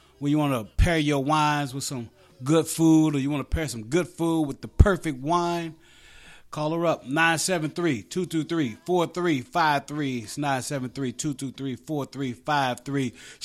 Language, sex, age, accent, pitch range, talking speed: English, male, 30-49, American, 135-165 Hz, 130 wpm